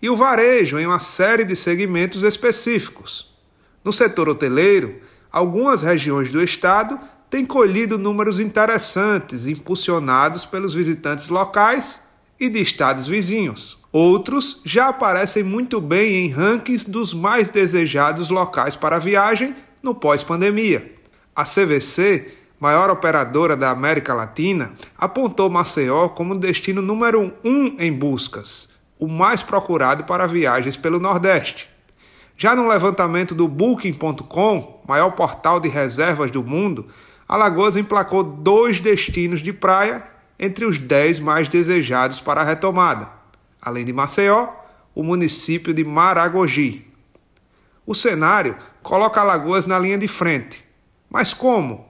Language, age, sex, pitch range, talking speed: Portuguese, 30-49, male, 155-210 Hz, 125 wpm